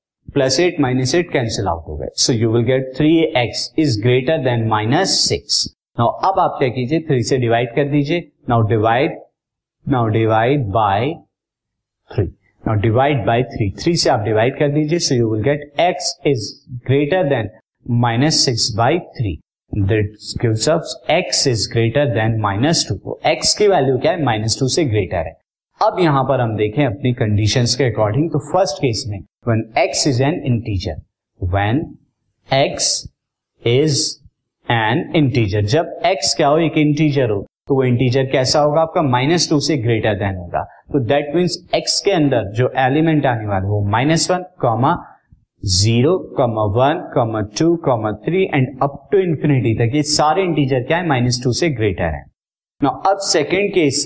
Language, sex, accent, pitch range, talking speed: Hindi, male, native, 110-150 Hz, 150 wpm